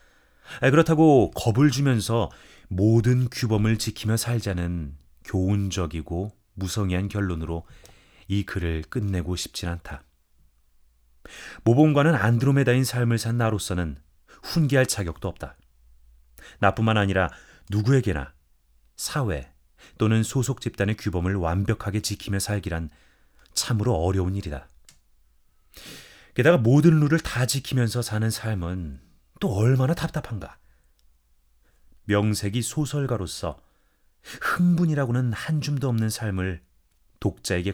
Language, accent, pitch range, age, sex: Korean, native, 80-115 Hz, 30-49, male